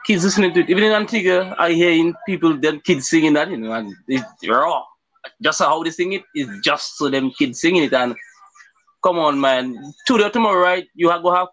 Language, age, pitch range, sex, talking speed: English, 20-39, 155-220 Hz, male, 235 wpm